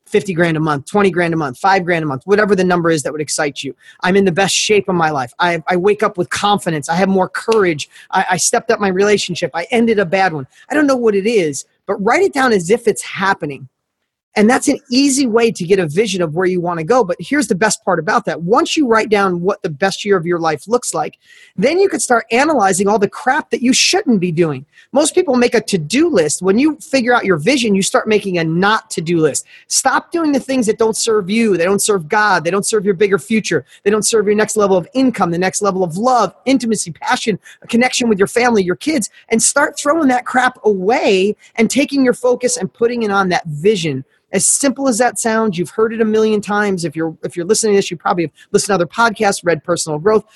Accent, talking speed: American, 255 wpm